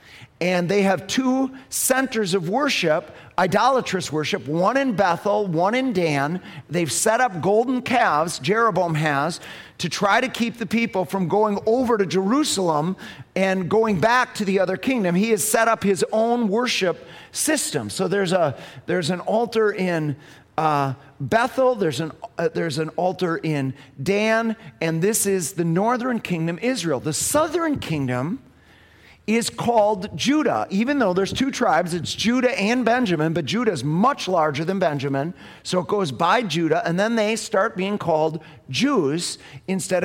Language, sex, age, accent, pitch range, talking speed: English, male, 40-59, American, 150-220 Hz, 160 wpm